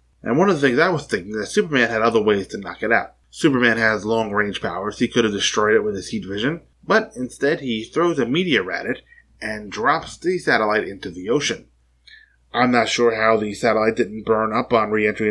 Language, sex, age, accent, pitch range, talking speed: English, male, 20-39, American, 100-120 Hz, 225 wpm